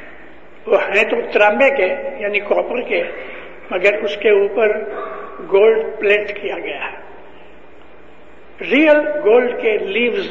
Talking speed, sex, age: 115 wpm, male, 60-79